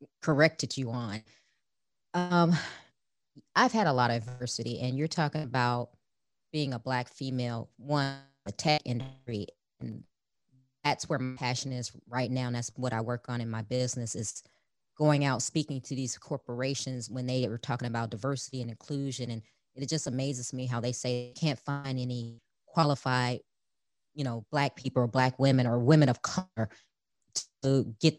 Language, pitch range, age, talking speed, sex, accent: English, 125-155 Hz, 20-39, 170 wpm, female, American